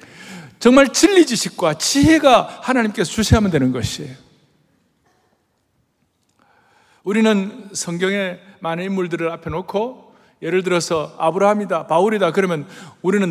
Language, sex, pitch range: Korean, male, 130-195 Hz